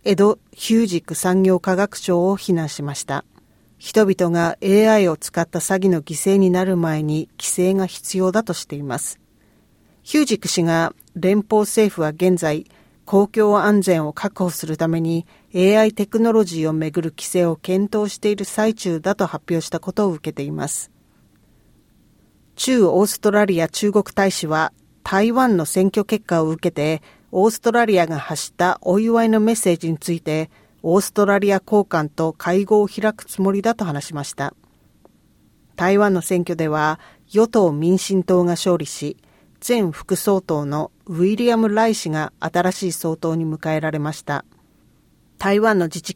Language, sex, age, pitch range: Japanese, female, 40-59, 160-205 Hz